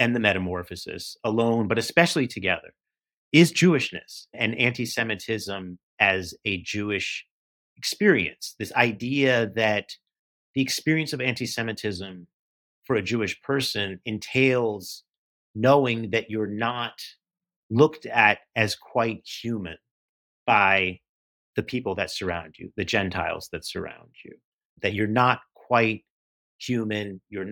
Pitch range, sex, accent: 95-115 Hz, male, American